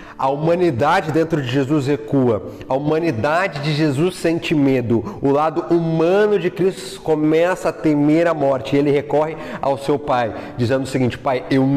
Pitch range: 140-165 Hz